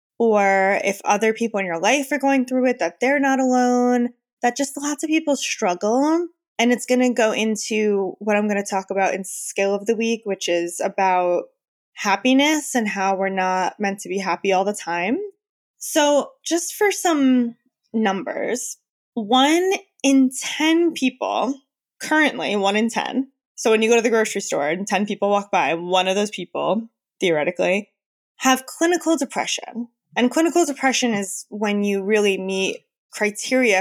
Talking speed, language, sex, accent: 170 wpm, English, female, American